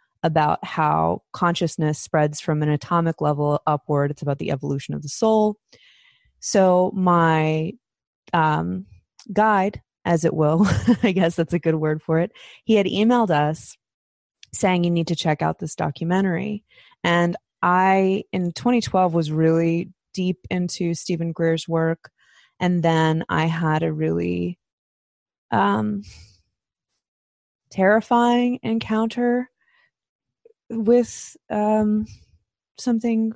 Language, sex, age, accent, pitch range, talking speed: English, female, 20-39, American, 160-205 Hz, 120 wpm